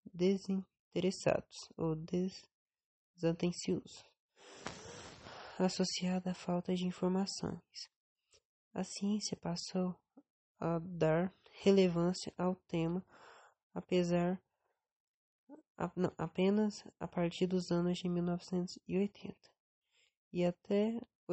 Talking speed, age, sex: 75 wpm, 20-39, female